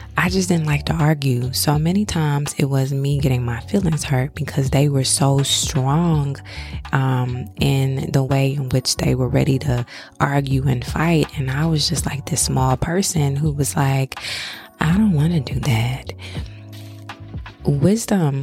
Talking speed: 170 wpm